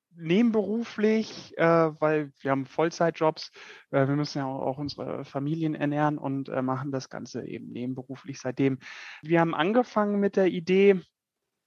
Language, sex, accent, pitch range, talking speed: German, male, German, 145-180 Hz, 145 wpm